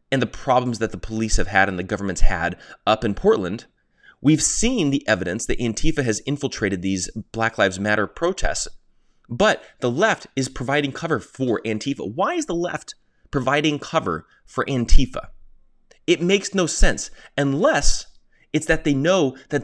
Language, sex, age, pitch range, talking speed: English, male, 30-49, 100-145 Hz, 160 wpm